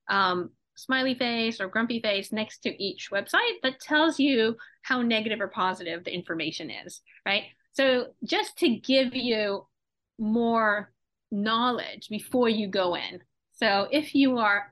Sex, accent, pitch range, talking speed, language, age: female, American, 195-260 Hz, 145 wpm, English, 30-49